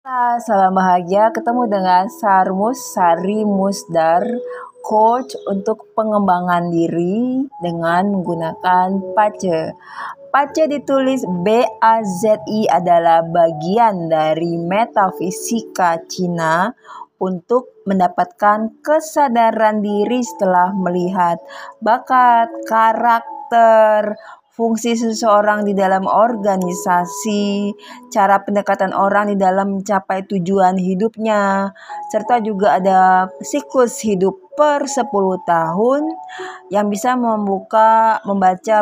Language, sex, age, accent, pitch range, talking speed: Indonesian, female, 30-49, native, 185-225 Hz, 85 wpm